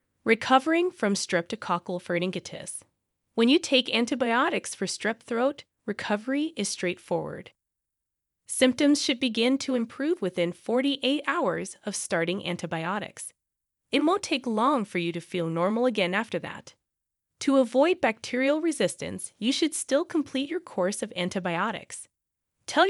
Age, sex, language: 20-39, female, English